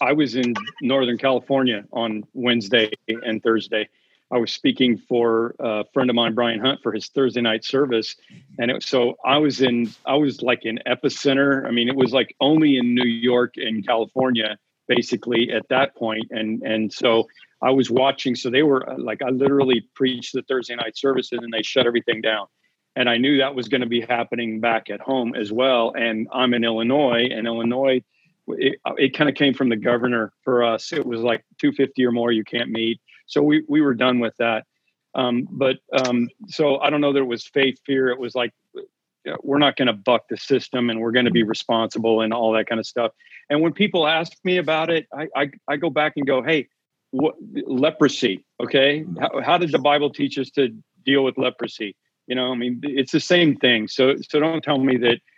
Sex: male